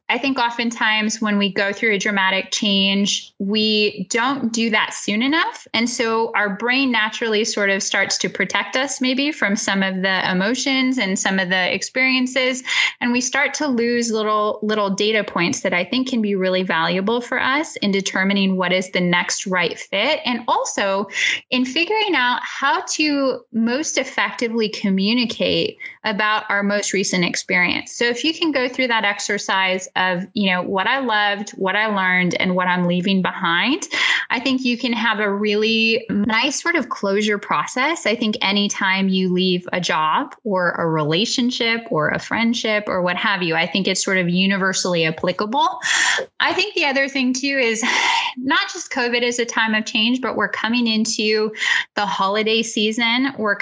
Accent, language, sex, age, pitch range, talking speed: American, English, female, 10-29, 195-255 Hz, 180 wpm